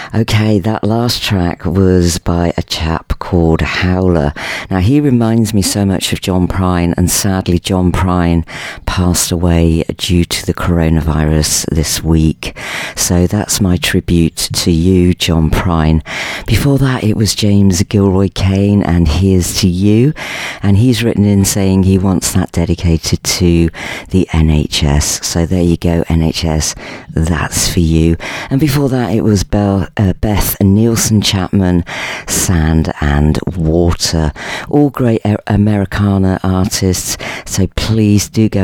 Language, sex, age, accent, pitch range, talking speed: English, female, 40-59, British, 85-100 Hz, 145 wpm